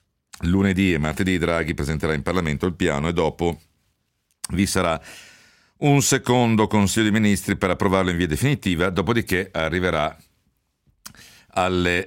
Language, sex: Italian, male